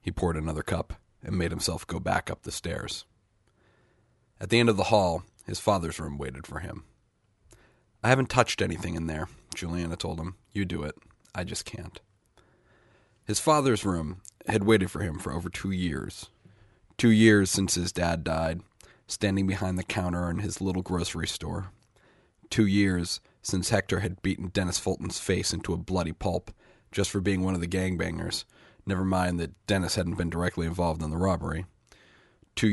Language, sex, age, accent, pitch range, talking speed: English, male, 40-59, American, 85-105 Hz, 180 wpm